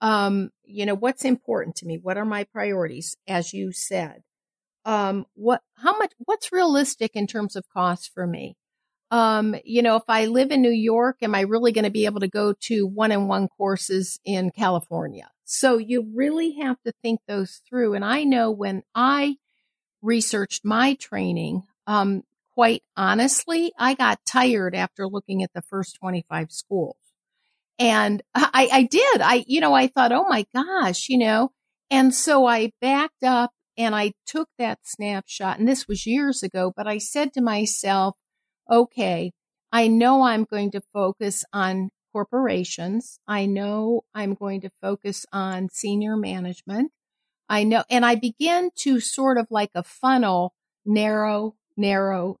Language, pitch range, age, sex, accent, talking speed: English, 195-250 Hz, 50-69, female, American, 165 wpm